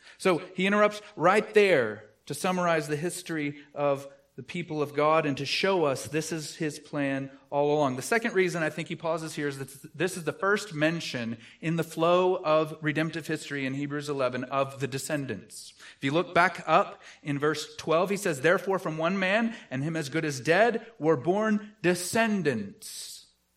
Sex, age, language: male, 30-49, English